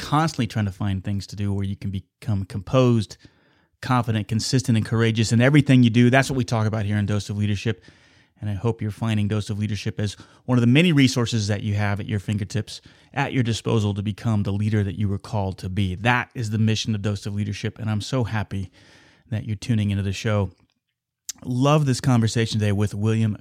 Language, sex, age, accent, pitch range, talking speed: English, male, 30-49, American, 105-125 Hz, 225 wpm